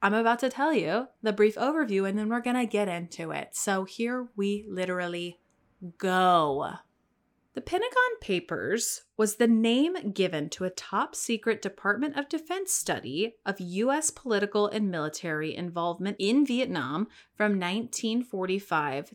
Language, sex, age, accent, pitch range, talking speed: English, female, 30-49, American, 175-235 Hz, 140 wpm